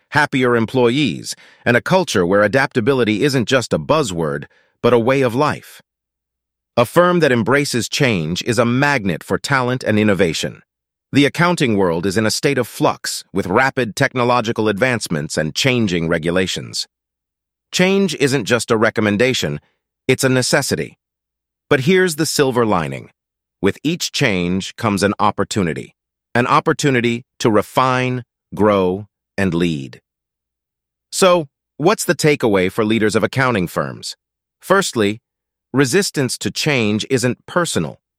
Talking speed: 135 wpm